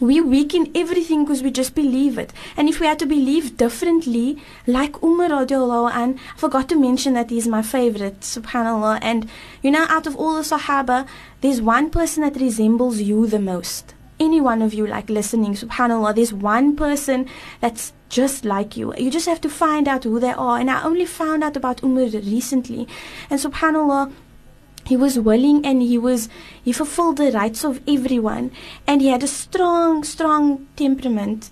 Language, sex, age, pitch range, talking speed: English, female, 20-39, 245-295 Hz, 180 wpm